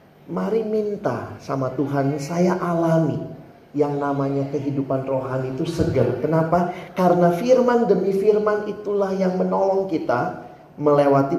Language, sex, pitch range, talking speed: Indonesian, male, 130-190 Hz, 115 wpm